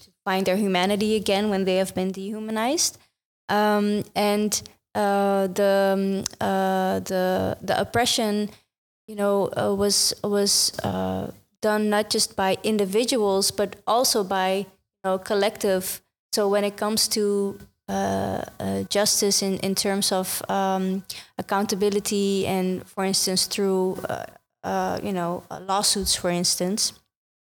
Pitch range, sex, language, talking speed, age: 190-210 Hz, female, English, 135 wpm, 20-39